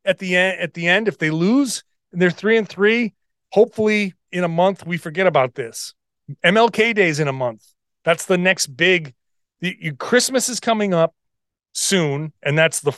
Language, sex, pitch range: English, male, 140-205 Hz